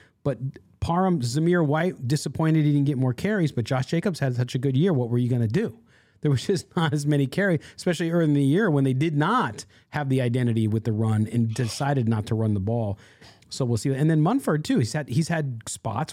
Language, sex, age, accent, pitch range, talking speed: English, male, 40-59, American, 120-165 Hz, 240 wpm